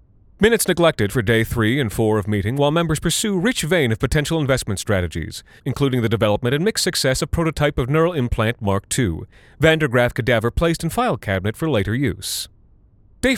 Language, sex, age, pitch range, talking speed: English, male, 30-49, 105-155 Hz, 185 wpm